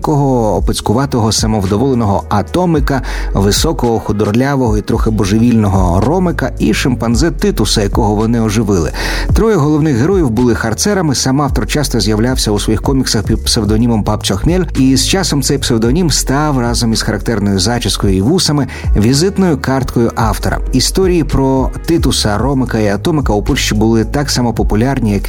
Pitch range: 105-135 Hz